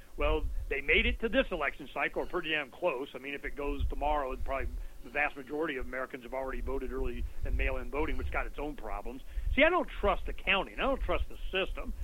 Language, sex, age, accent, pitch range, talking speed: English, male, 40-59, American, 150-215 Hz, 240 wpm